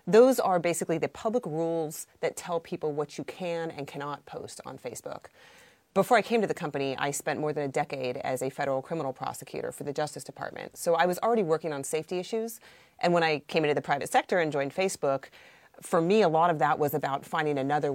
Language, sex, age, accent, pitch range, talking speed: English, female, 30-49, American, 140-175 Hz, 225 wpm